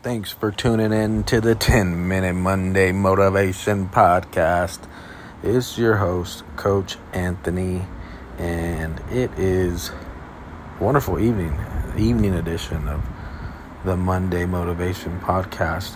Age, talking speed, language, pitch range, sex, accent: 40-59, 110 wpm, English, 85-100 Hz, male, American